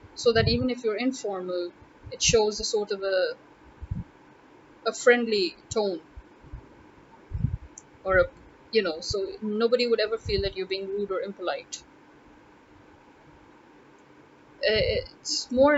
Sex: female